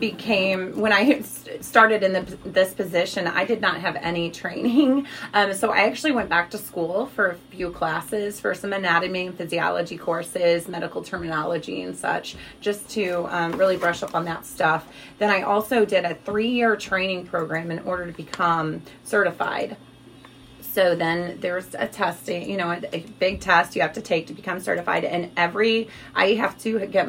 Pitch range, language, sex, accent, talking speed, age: 170-205 Hz, English, female, American, 175 wpm, 30-49